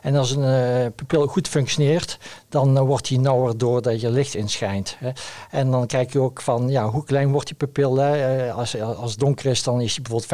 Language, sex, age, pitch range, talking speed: Dutch, male, 60-79, 125-150 Hz, 220 wpm